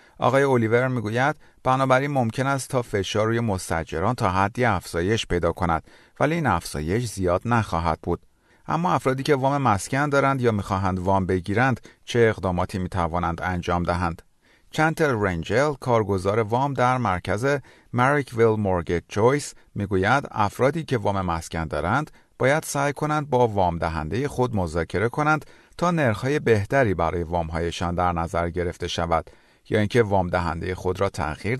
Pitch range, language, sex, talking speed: 85-125 Hz, Persian, male, 150 wpm